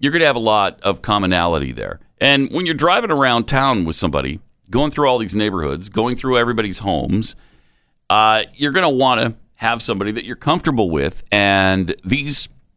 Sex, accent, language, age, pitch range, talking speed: male, American, English, 40-59, 90-135 Hz, 190 wpm